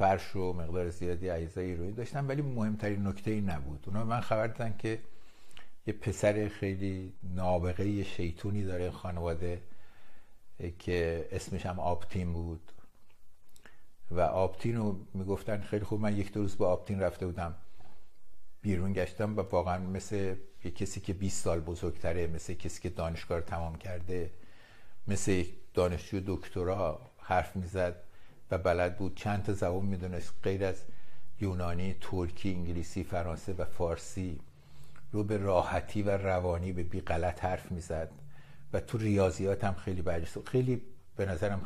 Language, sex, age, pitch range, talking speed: Persian, male, 60-79, 90-105 Hz, 140 wpm